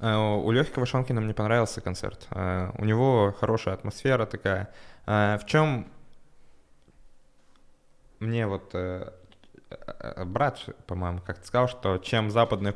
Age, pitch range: 20-39, 95-115 Hz